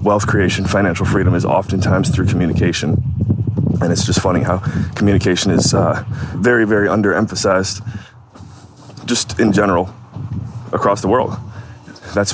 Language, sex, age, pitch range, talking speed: English, male, 20-39, 95-110 Hz, 125 wpm